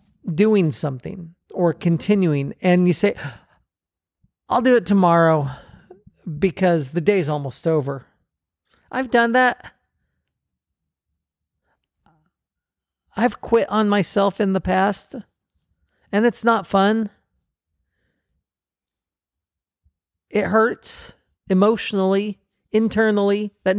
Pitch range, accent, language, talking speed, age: 155-210 Hz, American, English, 90 wpm, 40-59